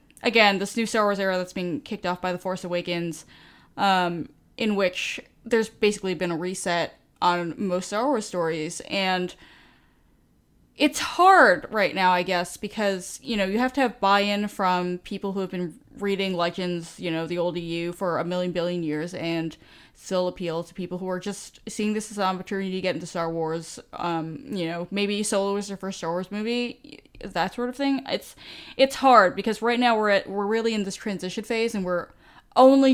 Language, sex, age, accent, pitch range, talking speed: English, female, 10-29, American, 170-215 Hz, 200 wpm